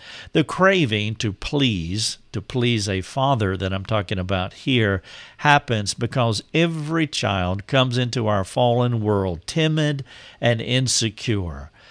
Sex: male